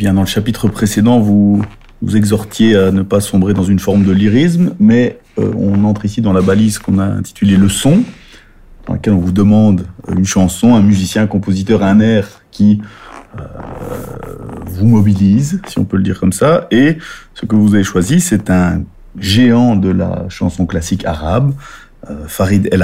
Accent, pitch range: French, 95-110 Hz